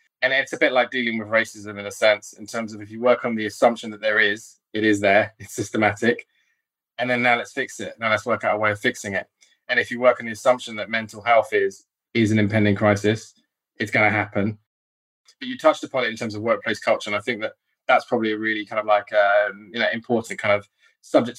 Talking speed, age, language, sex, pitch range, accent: 255 wpm, 20-39, English, male, 105-120 Hz, British